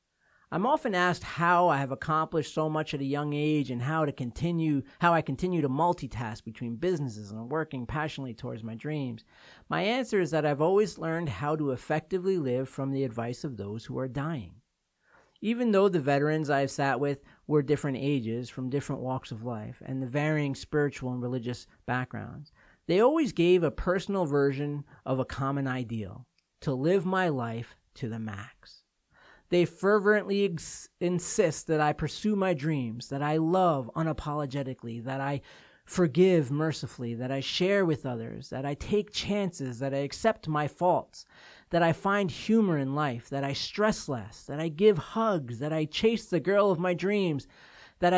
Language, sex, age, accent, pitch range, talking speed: English, male, 50-69, American, 135-180 Hz, 175 wpm